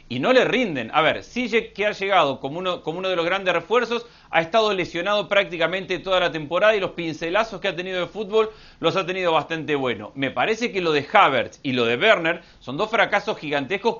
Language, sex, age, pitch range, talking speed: Spanish, male, 40-59, 155-205 Hz, 225 wpm